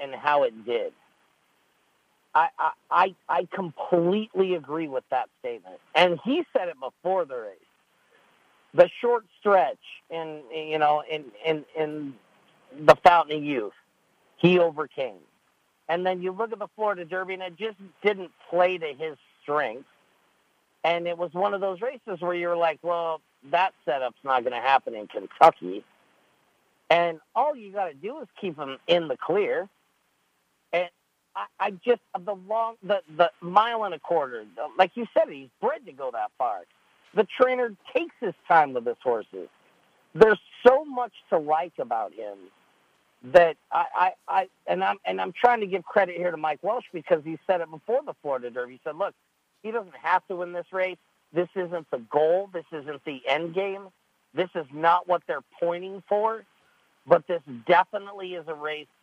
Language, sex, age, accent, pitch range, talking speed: English, male, 50-69, American, 160-210 Hz, 175 wpm